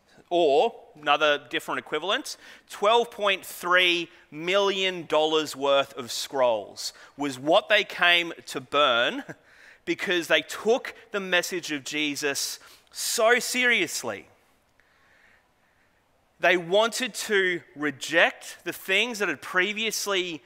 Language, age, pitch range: English, 30-49, 150-205 Hz